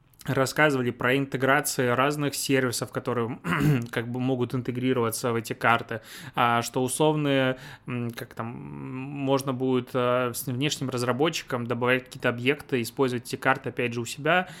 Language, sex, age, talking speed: Russian, male, 20-39, 140 wpm